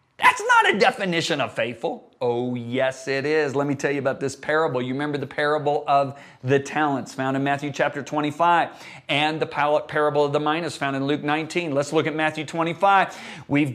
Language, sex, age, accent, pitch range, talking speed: English, male, 40-59, American, 150-190 Hz, 195 wpm